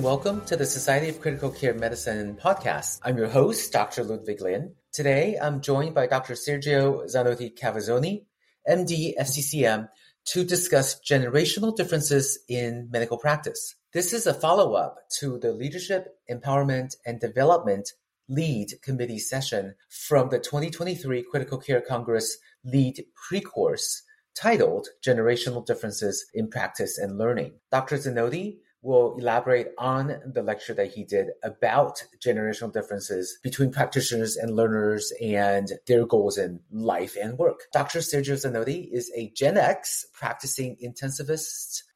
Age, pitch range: 30-49, 120-155 Hz